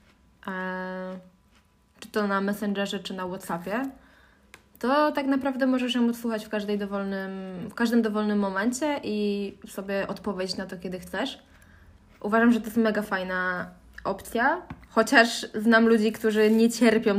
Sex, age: female, 20-39